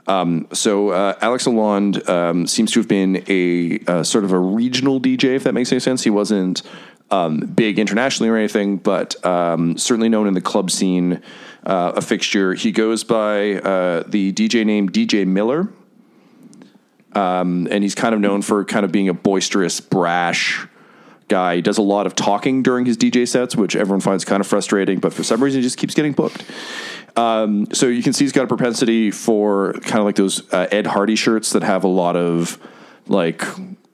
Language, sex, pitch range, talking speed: English, male, 95-115 Hz, 200 wpm